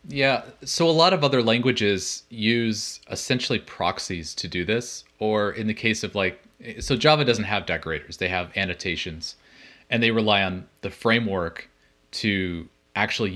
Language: English